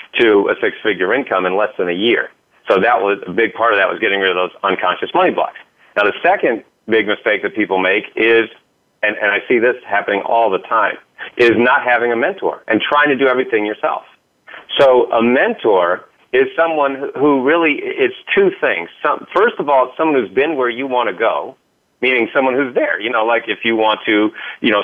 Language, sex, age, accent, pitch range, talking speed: English, male, 40-59, American, 120-165 Hz, 215 wpm